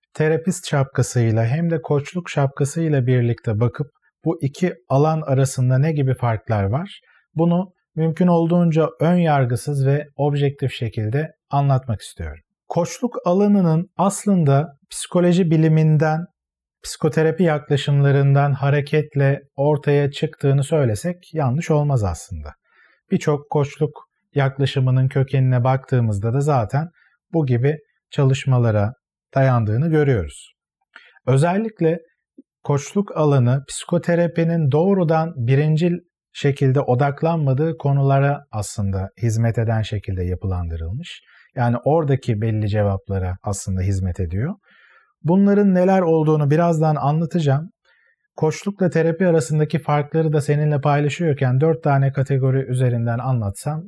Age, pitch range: 40-59, 130-160 Hz